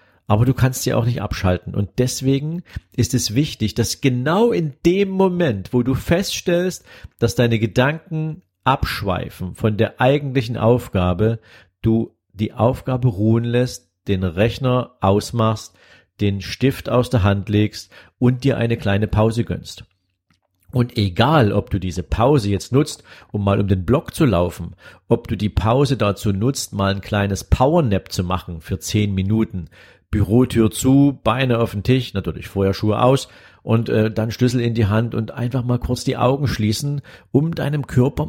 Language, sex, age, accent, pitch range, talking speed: German, male, 50-69, German, 100-130 Hz, 165 wpm